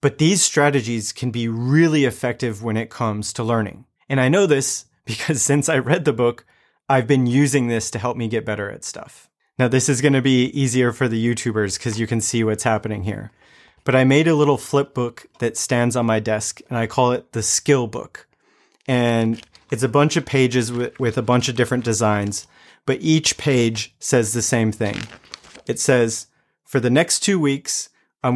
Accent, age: American, 30-49